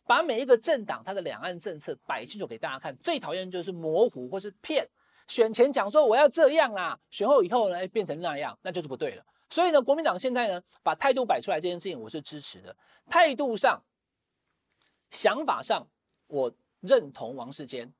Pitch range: 185-280 Hz